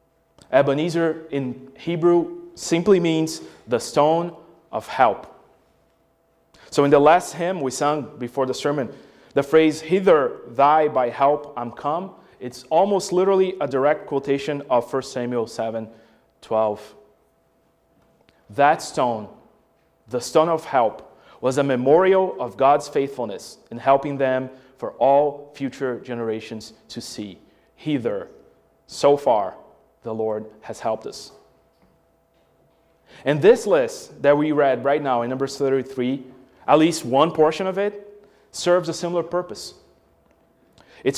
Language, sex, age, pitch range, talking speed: English, male, 30-49, 125-165 Hz, 130 wpm